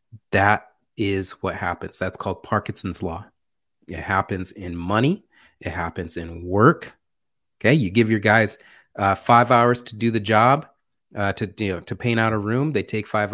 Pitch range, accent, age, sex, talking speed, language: 100-140 Hz, American, 30-49, male, 180 wpm, English